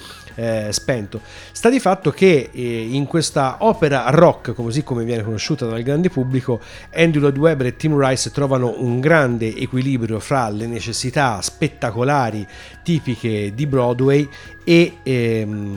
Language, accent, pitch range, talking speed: Italian, native, 115-150 Hz, 140 wpm